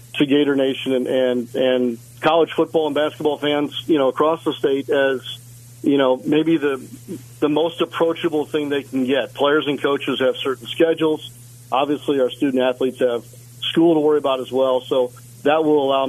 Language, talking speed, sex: English, 185 wpm, male